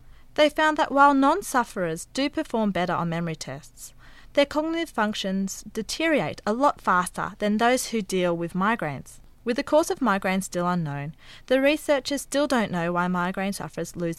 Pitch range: 170-260 Hz